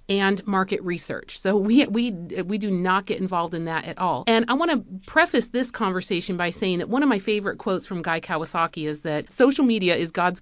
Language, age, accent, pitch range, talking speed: English, 30-49, American, 170-220 Hz, 225 wpm